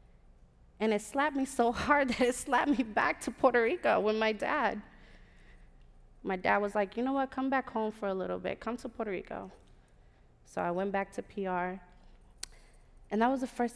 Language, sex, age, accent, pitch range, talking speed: English, female, 20-39, American, 180-225 Hz, 200 wpm